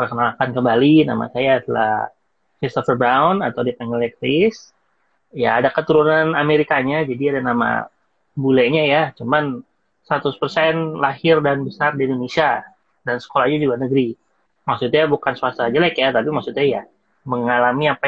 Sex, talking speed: male, 135 wpm